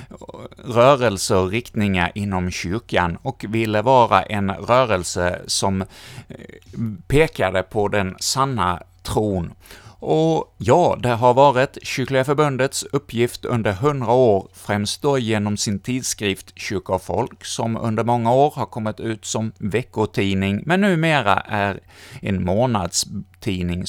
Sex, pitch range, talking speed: male, 95-120 Hz, 120 wpm